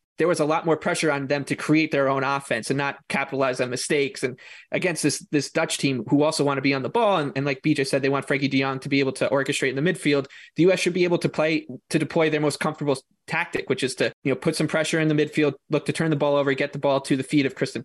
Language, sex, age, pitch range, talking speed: English, male, 20-39, 140-160 Hz, 295 wpm